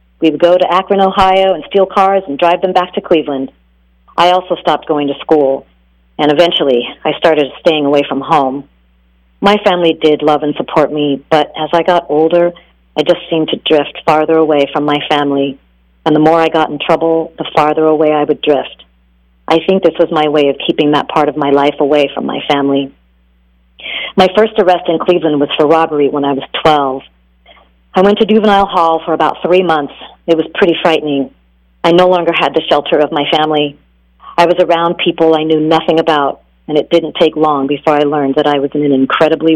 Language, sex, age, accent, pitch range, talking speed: English, female, 40-59, American, 140-165 Hz, 210 wpm